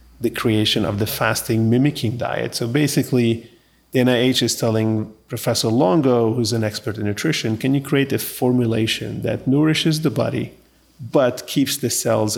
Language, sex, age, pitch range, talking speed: English, male, 40-59, 115-140 Hz, 160 wpm